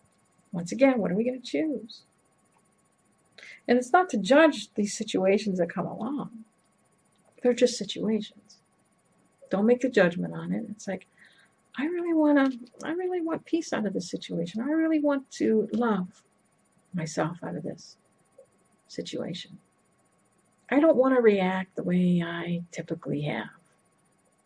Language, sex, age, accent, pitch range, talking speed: English, female, 50-69, American, 180-245 Hz, 145 wpm